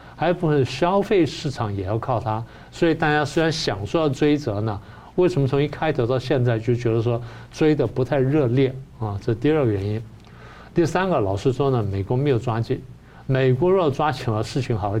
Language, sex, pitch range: Chinese, male, 115-145 Hz